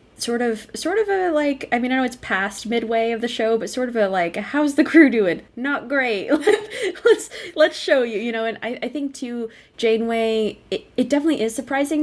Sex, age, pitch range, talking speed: female, 20-39, 175-240 Hz, 220 wpm